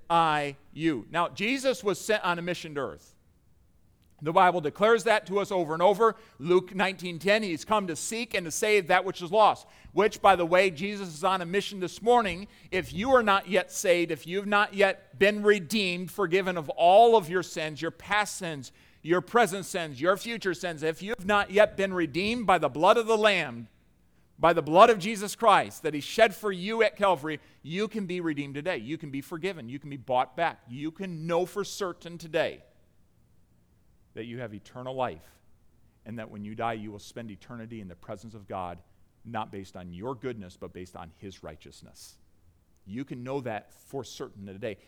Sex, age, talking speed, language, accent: male, 40-59, 210 wpm, English, American